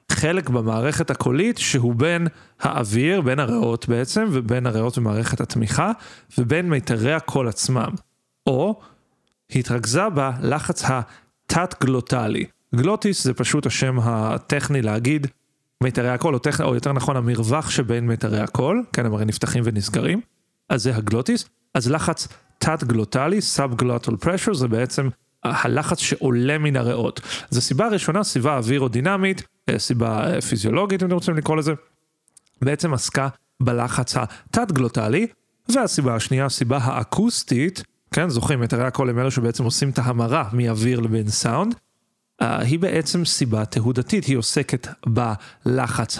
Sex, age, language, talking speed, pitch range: male, 40-59, Hebrew, 130 wpm, 120-155 Hz